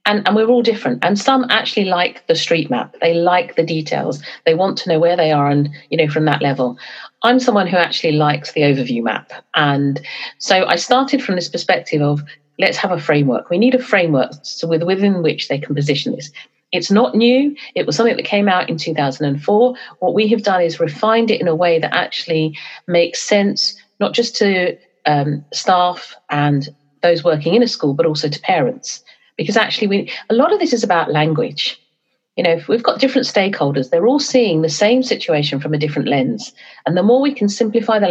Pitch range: 150-220 Hz